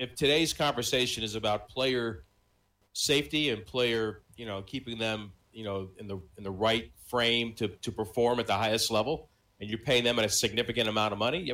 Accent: American